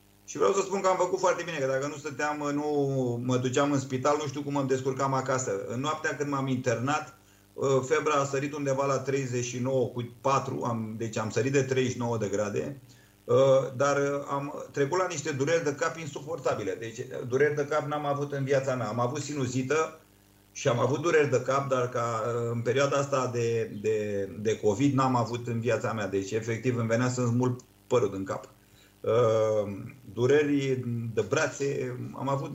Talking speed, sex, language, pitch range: 185 wpm, male, Romanian, 115-140 Hz